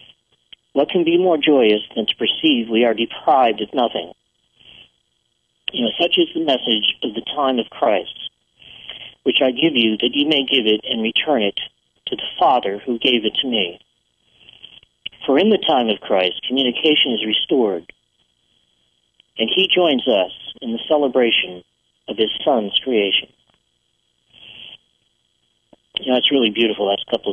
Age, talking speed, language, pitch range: 40-59, 160 wpm, English, 100-135 Hz